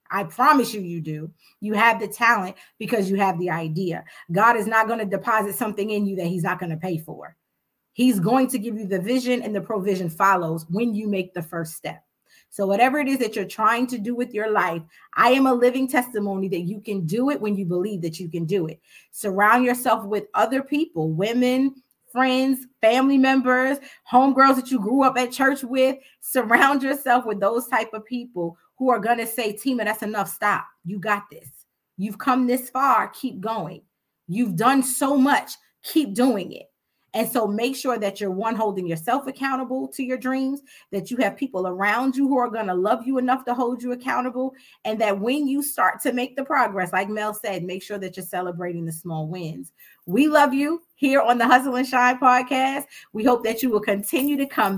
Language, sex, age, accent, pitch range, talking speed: English, female, 30-49, American, 200-260 Hz, 210 wpm